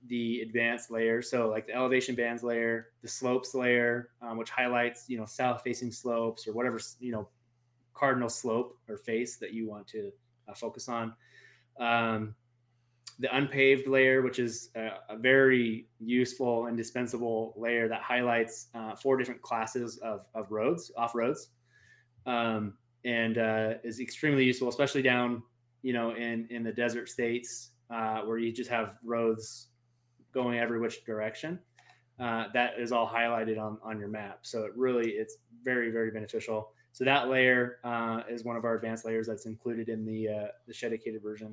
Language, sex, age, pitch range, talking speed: English, male, 20-39, 115-125 Hz, 170 wpm